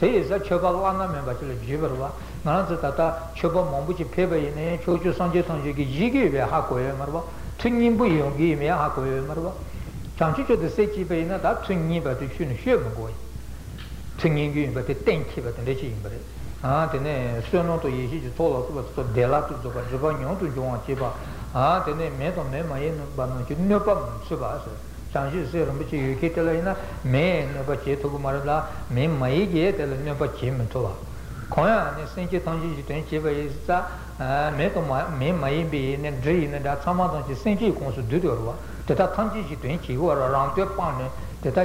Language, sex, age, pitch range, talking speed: Italian, male, 60-79, 130-170 Hz, 70 wpm